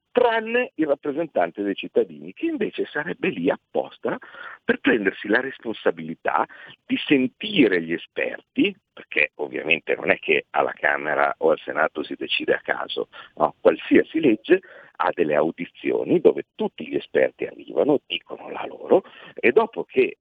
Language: Italian